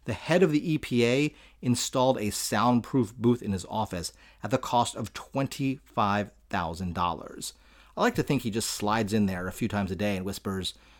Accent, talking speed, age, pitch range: American, 180 wpm, 30-49, 105-140 Hz